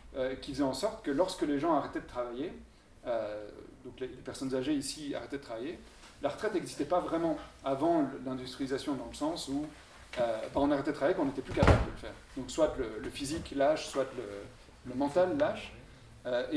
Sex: male